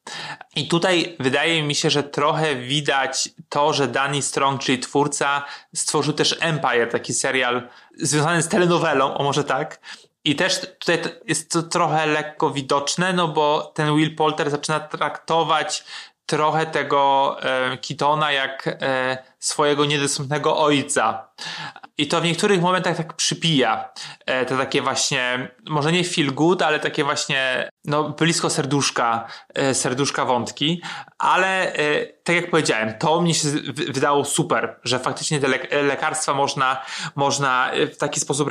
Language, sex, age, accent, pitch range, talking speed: Polish, male, 20-39, native, 140-165 Hz, 140 wpm